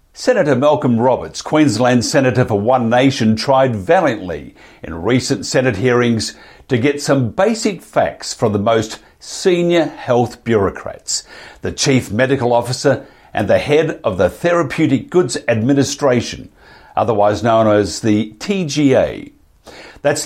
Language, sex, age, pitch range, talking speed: English, male, 50-69, 110-145 Hz, 125 wpm